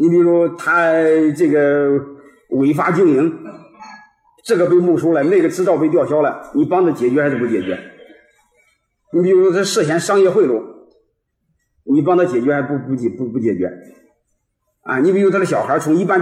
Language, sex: Chinese, male